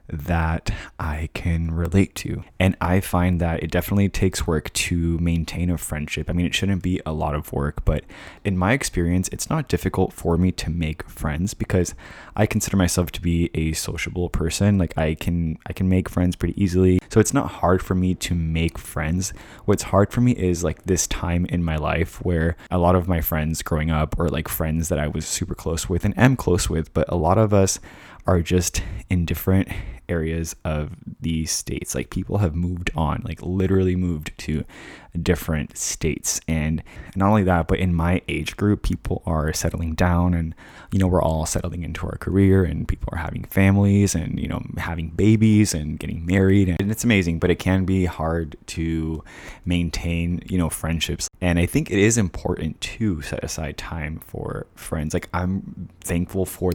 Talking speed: 195 wpm